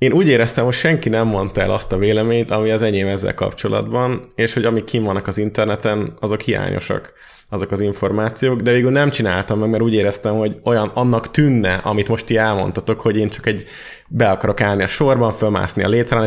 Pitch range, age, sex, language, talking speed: 95-115 Hz, 20-39, male, Hungarian, 205 wpm